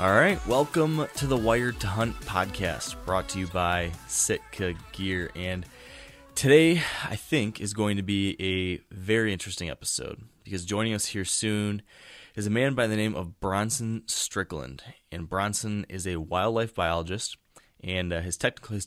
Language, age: English, 20-39